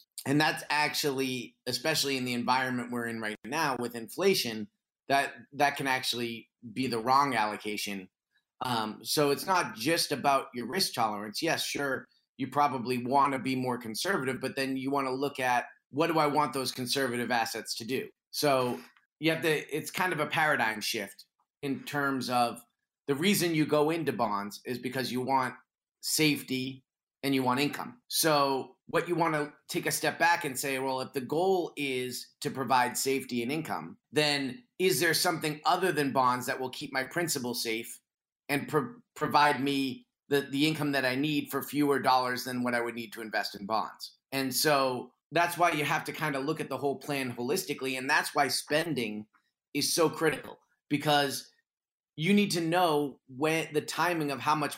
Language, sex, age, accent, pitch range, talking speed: English, male, 30-49, American, 125-150 Hz, 190 wpm